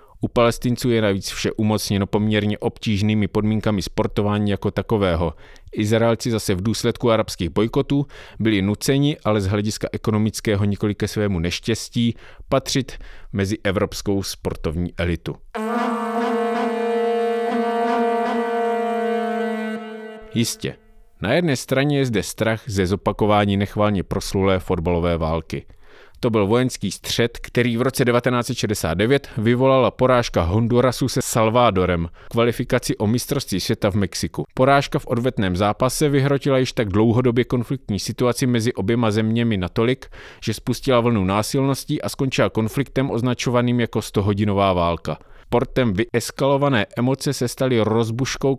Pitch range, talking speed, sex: 105-130 Hz, 120 wpm, male